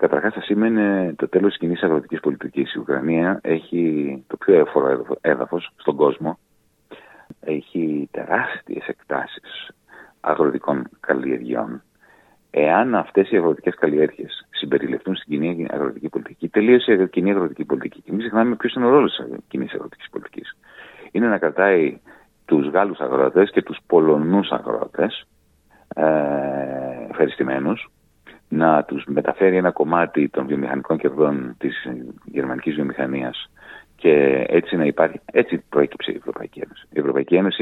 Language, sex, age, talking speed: Greek, male, 40-59, 135 wpm